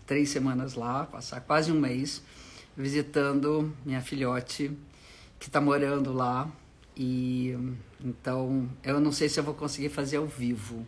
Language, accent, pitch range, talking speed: Portuguese, Brazilian, 130-150 Hz, 145 wpm